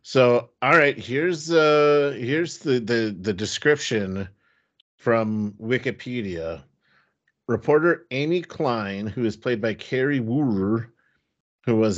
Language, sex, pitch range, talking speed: English, male, 105-130 Hz, 115 wpm